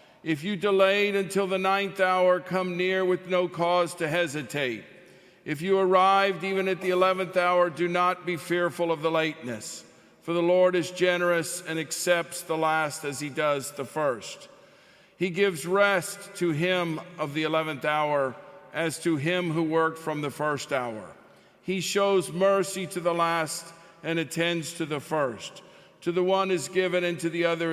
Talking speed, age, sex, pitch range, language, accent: 175 wpm, 50-69, male, 165-185 Hz, English, American